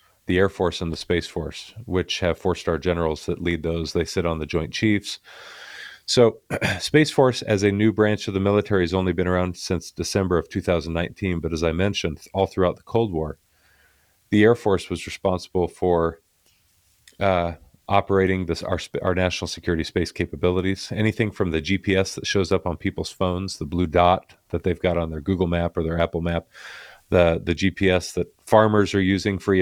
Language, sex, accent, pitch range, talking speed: English, male, American, 85-100 Hz, 190 wpm